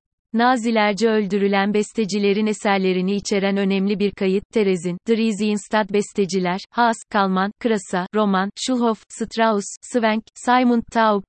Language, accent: Turkish, native